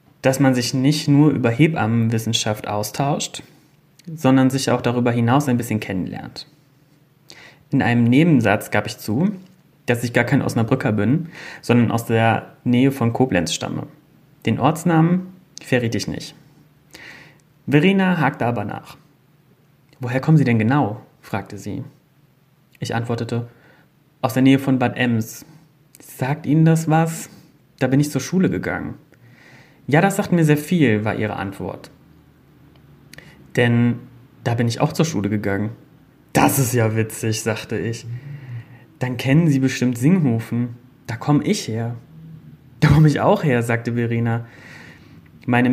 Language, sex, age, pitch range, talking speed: German, male, 30-49, 115-150 Hz, 145 wpm